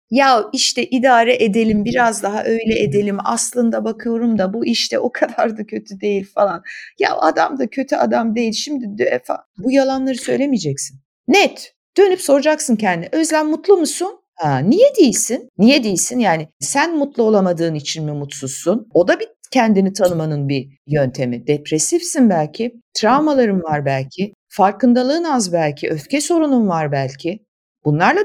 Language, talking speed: Turkish, 145 wpm